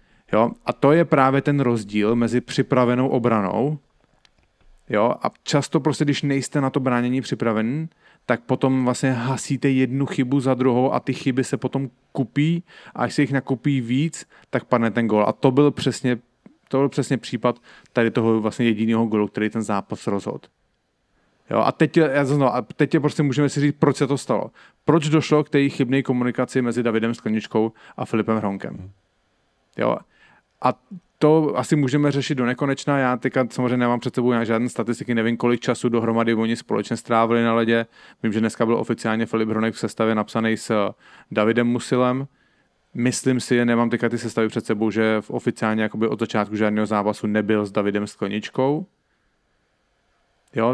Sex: male